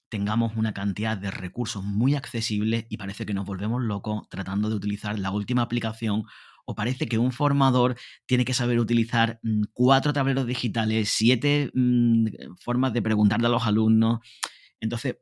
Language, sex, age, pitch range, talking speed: Spanish, male, 30-49, 100-120 Hz, 160 wpm